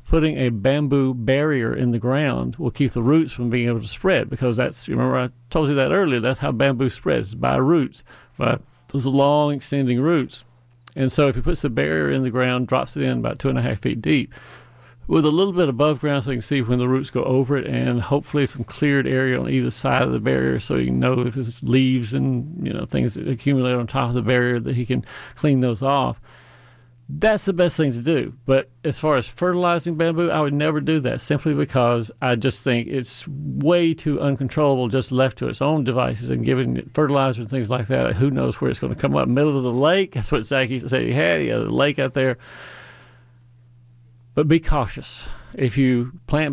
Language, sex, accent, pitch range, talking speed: English, male, American, 125-145 Hz, 225 wpm